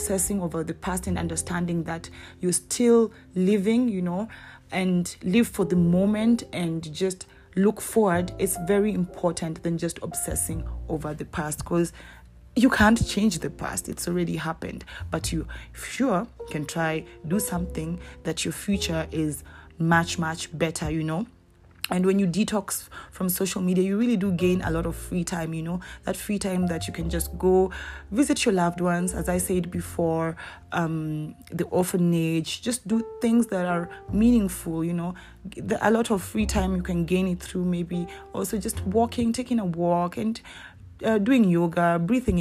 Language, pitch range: English, 165-205 Hz